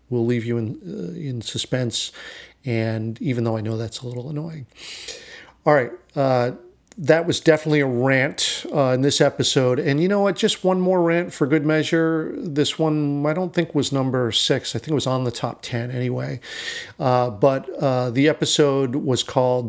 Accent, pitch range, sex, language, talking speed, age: American, 120-155 Hz, male, English, 190 wpm, 50-69